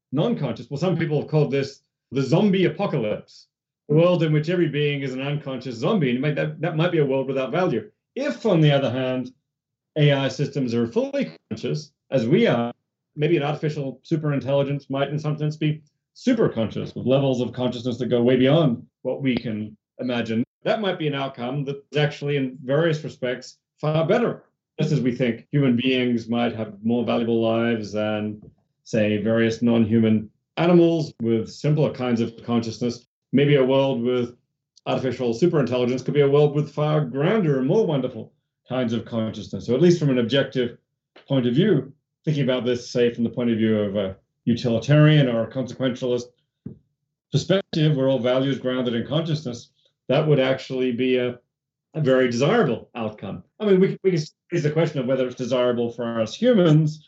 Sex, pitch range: male, 125-150 Hz